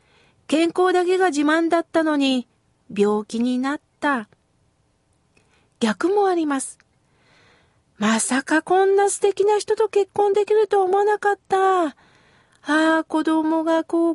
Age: 40-59